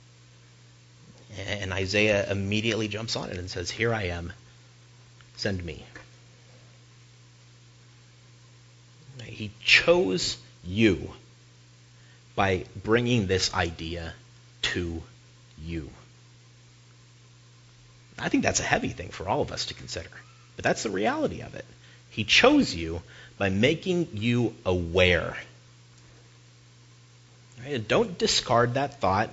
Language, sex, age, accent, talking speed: English, male, 40-59, American, 105 wpm